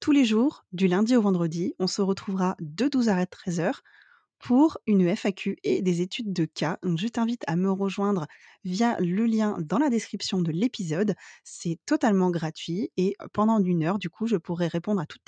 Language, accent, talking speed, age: French, French, 195 wpm, 20-39